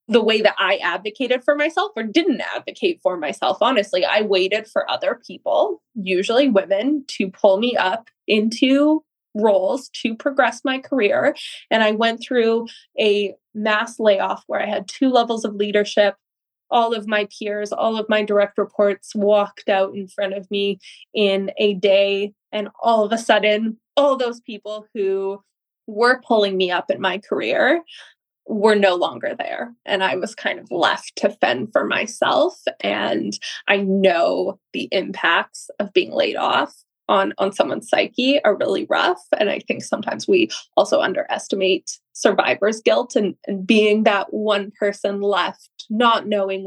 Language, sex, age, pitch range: English, female, 20-39, 200-235 Hz